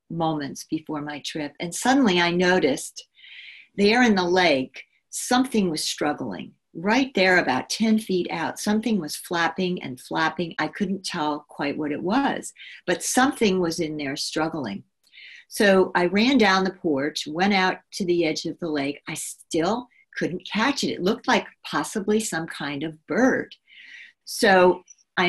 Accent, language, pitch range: American, English, 160-215 Hz